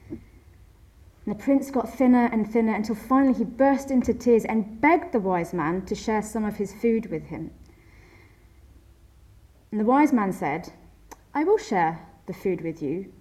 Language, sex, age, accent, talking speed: English, female, 30-49, British, 175 wpm